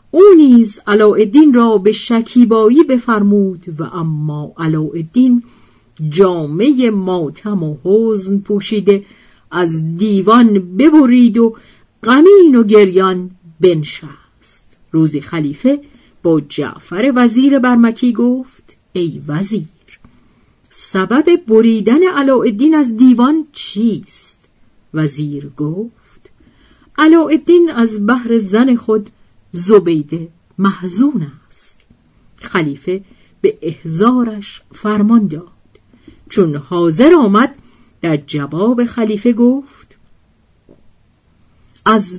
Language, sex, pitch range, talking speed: Persian, female, 165-245 Hz, 85 wpm